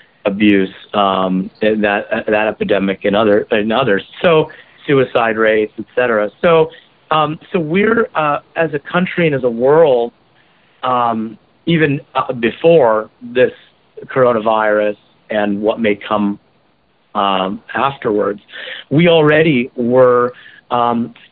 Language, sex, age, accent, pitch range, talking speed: English, male, 50-69, American, 110-145 Hz, 115 wpm